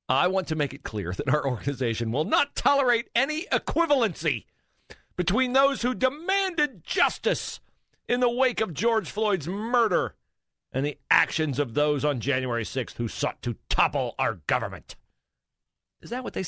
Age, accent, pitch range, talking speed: 50-69, American, 125-170 Hz, 160 wpm